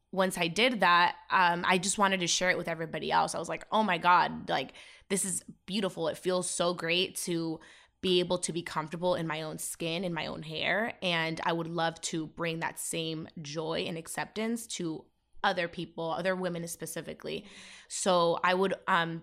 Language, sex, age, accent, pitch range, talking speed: English, female, 20-39, American, 170-195 Hz, 195 wpm